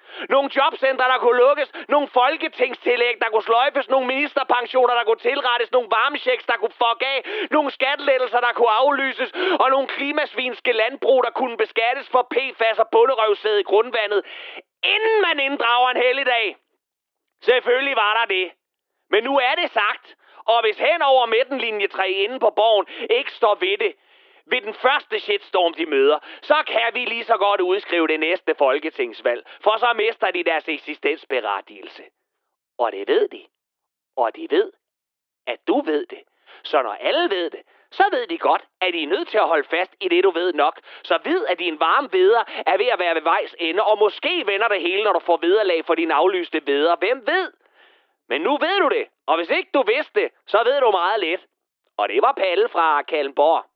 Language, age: Danish, 30-49